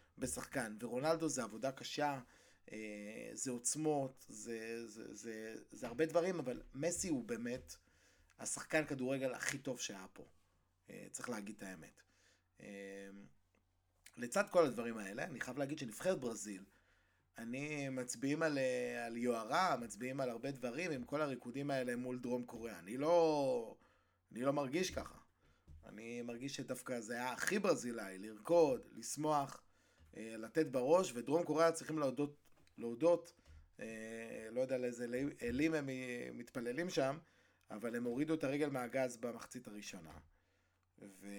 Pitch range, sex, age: 105-140 Hz, male, 20-39